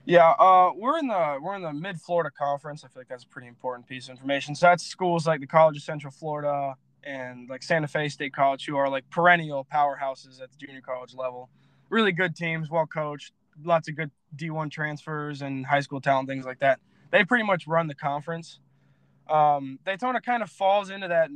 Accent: American